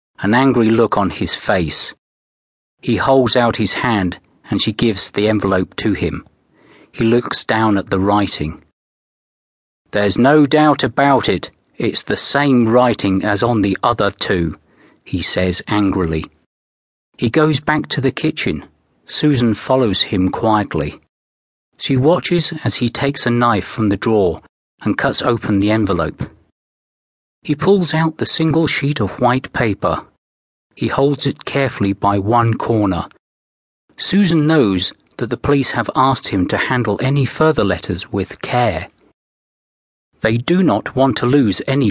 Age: 40-59